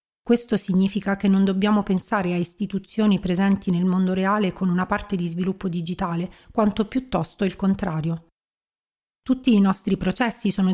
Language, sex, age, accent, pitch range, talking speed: Italian, female, 40-59, native, 185-215 Hz, 150 wpm